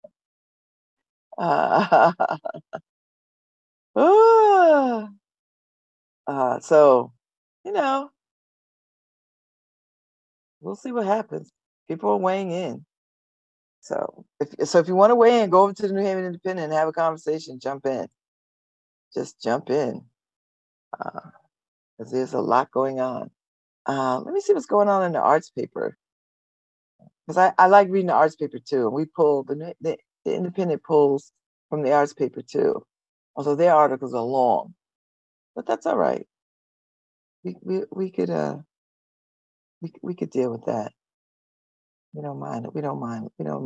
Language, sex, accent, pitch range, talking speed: English, female, American, 130-205 Hz, 145 wpm